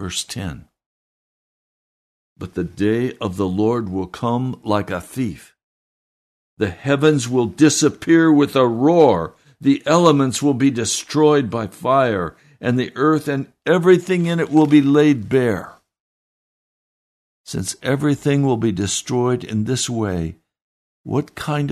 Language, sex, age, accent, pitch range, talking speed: English, male, 60-79, American, 105-150 Hz, 135 wpm